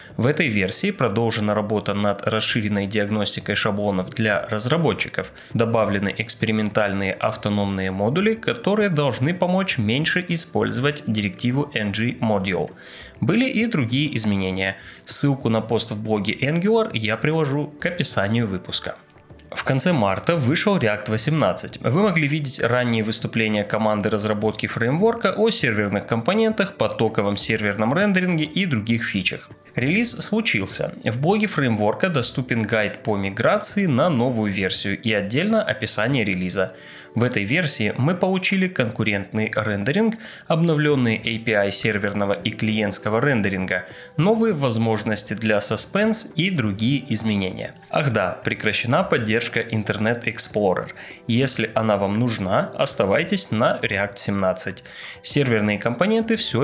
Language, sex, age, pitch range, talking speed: Russian, male, 20-39, 105-150 Hz, 120 wpm